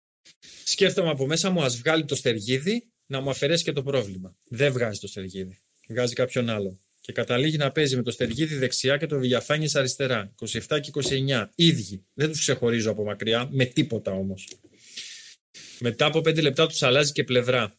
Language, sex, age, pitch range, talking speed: Greek, male, 30-49, 115-160 Hz, 180 wpm